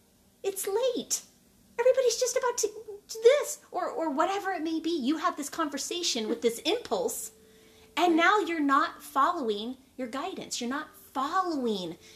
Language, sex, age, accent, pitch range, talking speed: English, female, 30-49, American, 225-315 Hz, 155 wpm